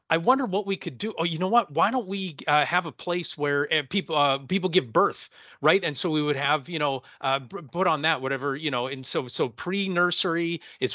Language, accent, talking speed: English, American, 245 wpm